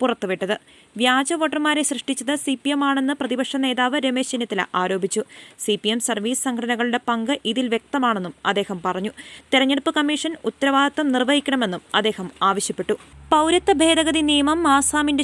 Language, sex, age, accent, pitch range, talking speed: Malayalam, female, 20-39, native, 230-275 Hz, 90 wpm